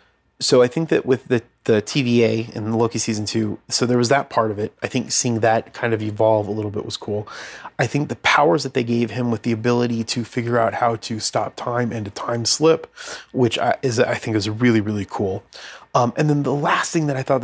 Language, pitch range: English, 110-125 Hz